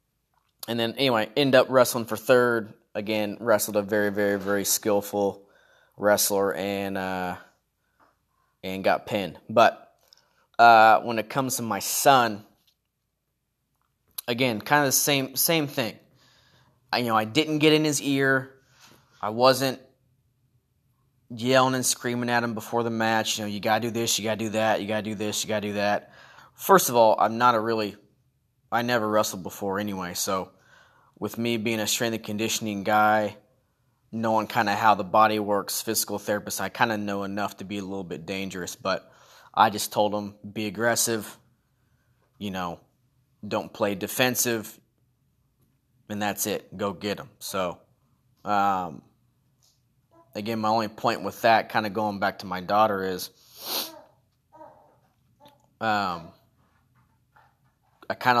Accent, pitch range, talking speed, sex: American, 105-125 Hz, 160 wpm, male